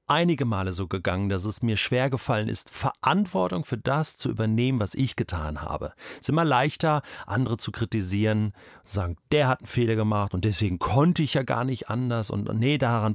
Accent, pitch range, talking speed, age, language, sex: German, 110-145 Hz, 200 wpm, 40-59, German, male